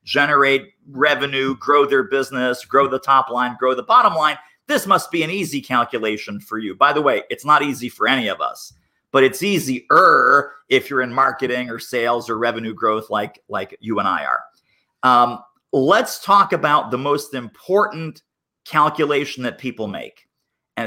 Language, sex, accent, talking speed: English, male, American, 175 wpm